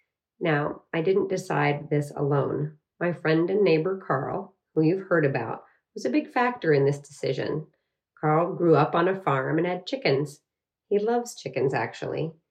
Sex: female